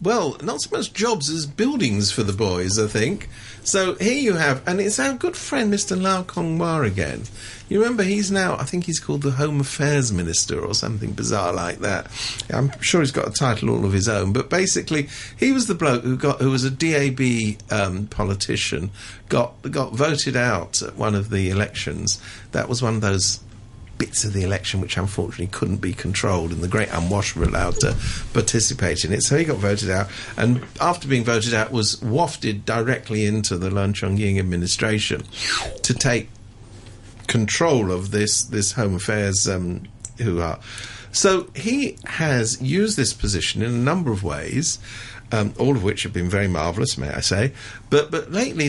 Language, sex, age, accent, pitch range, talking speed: English, male, 50-69, British, 100-145 Hz, 185 wpm